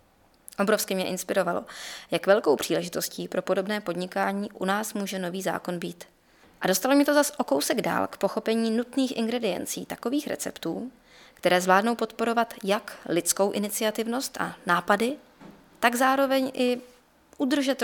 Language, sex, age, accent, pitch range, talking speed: Czech, female, 20-39, native, 185-235 Hz, 140 wpm